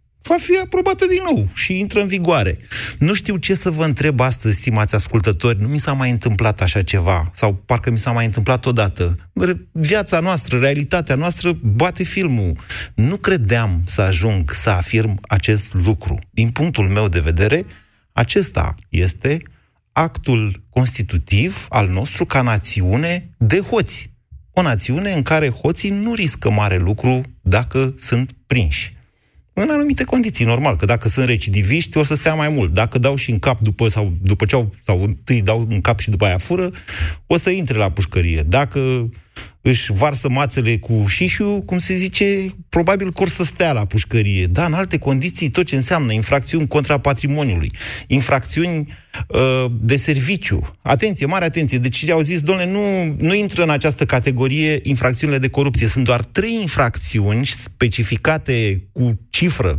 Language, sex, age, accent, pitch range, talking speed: Romanian, male, 30-49, native, 105-155 Hz, 160 wpm